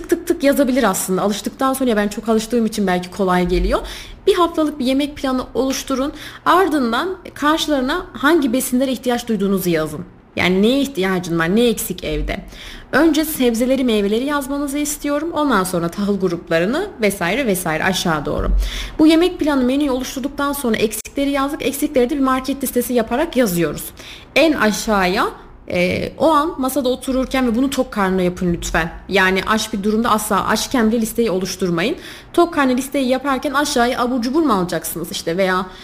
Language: Turkish